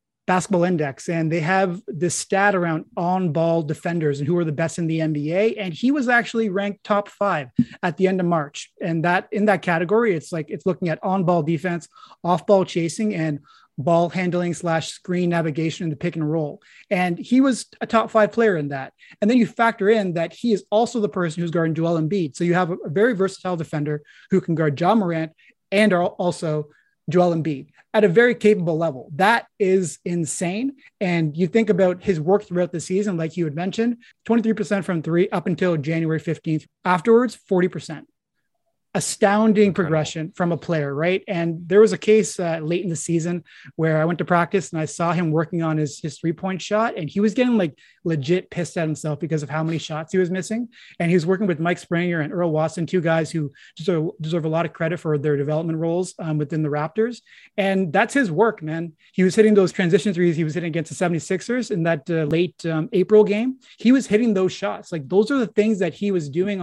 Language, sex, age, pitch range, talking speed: English, male, 30-49, 165-200 Hz, 220 wpm